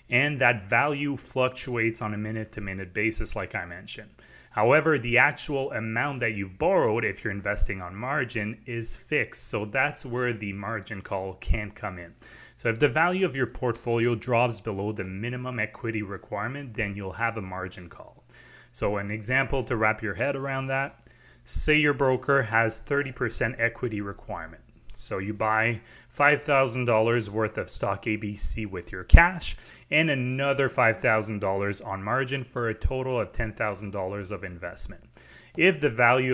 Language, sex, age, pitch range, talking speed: English, male, 30-49, 105-130 Hz, 160 wpm